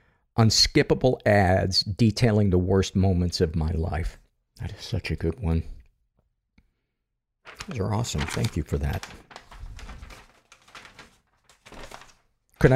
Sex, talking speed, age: male, 110 wpm, 50-69